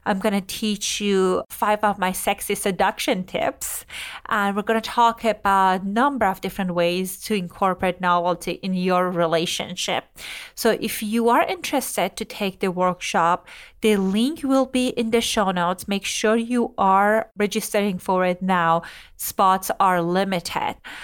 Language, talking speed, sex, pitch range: English, 160 wpm, female, 195-255 Hz